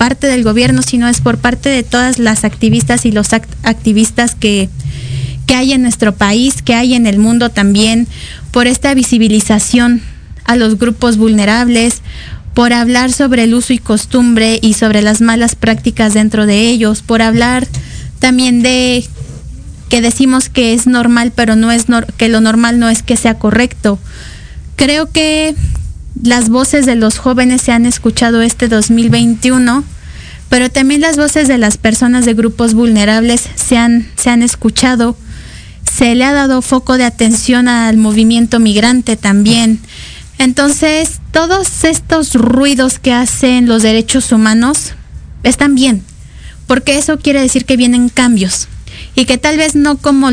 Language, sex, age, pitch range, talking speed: Spanish, female, 20-39, 225-255 Hz, 155 wpm